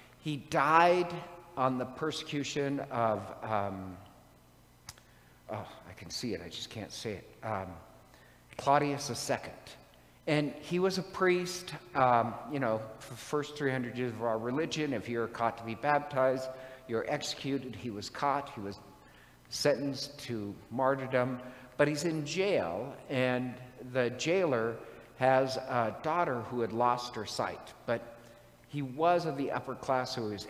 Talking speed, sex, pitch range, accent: 150 wpm, male, 115-145 Hz, American